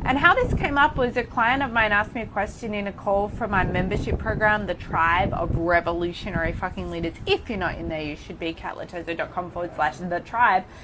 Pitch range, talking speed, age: 190-260 Hz, 220 wpm, 30-49